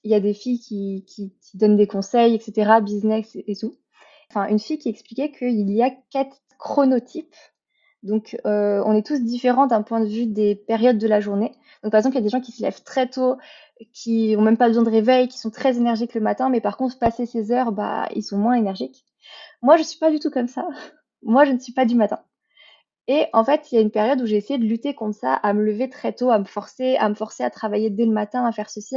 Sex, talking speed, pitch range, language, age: female, 265 wpm, 215-265 Hz, French, 20-39